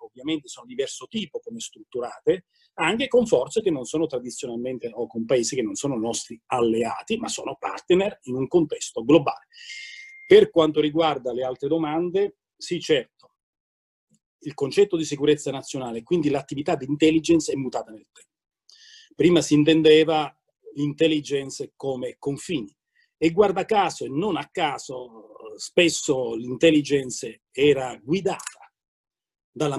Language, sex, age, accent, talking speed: Italian, male, 40-59, native, 135 wpm